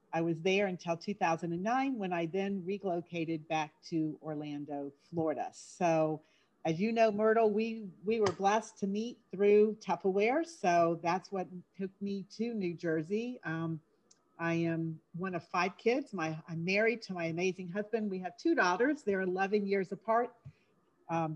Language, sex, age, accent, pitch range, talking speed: English, female, 50-69, American, 170-205 Hz, 160 wpm